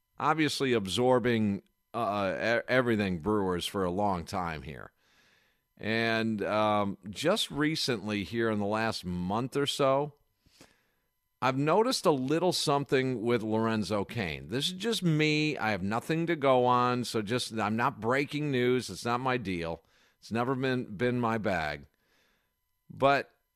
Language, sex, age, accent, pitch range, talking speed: English, male, 50-69, American, 110-140 Hz, 145 wpm